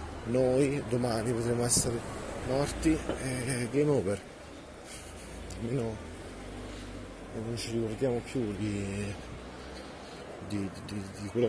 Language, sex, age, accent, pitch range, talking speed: Italian, male, 30-49, native, 95-120 Hz, 95 wpm